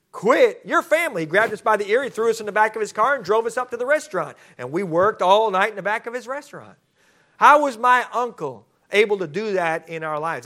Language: English